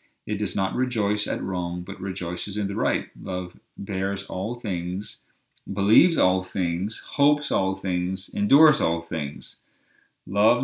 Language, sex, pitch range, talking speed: English, male, 90-110 Hz, 140 wpm